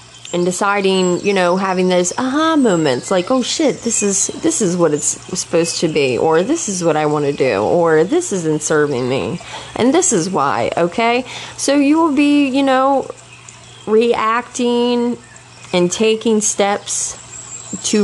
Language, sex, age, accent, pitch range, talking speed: English, female, 30-49, American, 170-220 Hz, 165 wpm